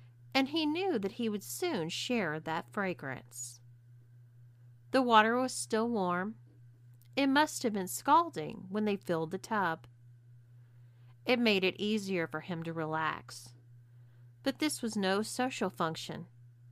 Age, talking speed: 40-59, 140 wpm